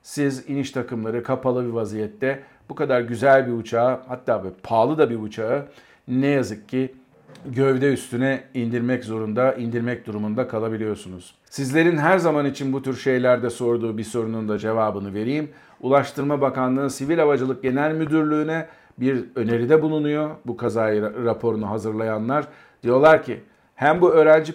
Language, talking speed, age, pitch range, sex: Turkish, 140 wpm, 50-69, 115-140 Hz, male